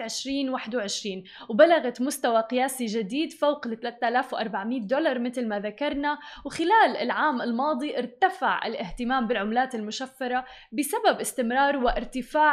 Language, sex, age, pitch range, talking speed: English, female, 20-39, 235-295 Hz, 100 wpm